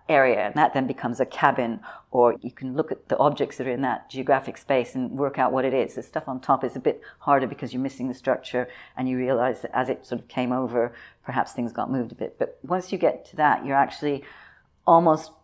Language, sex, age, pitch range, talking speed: English, female, 50-69, 130-150 Hz, 250 wpm